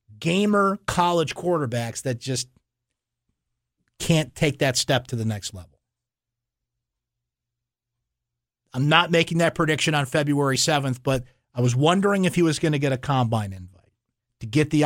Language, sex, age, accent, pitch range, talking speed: English, male, 50-69, American, 120-160 Hz, 150 wpm